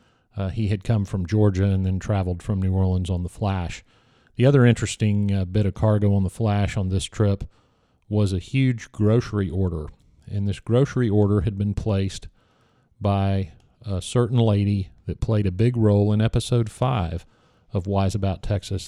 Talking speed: 180 wpm